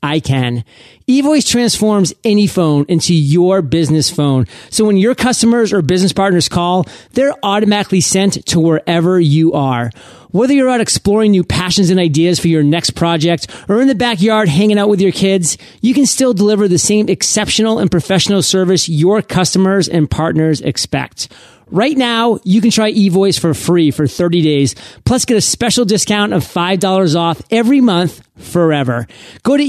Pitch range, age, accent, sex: 155-210 Hz, 30-49, American, male